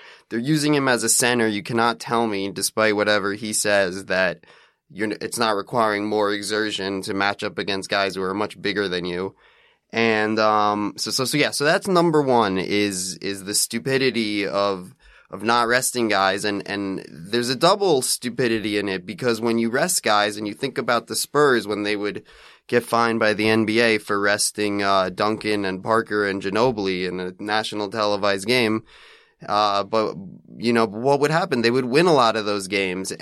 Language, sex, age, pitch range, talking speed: English, male, 20-39, 105-120 Hz, 190 wpm